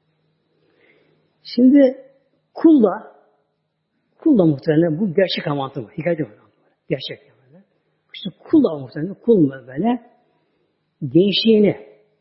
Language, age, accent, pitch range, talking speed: Turkish, 60-79, native, 155-215 Hz, 90 wpm